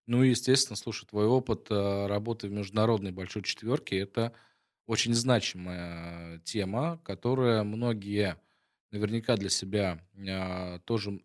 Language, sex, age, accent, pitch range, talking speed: Russian, male, 20-39, native, 95-115 Hz, 110 wpm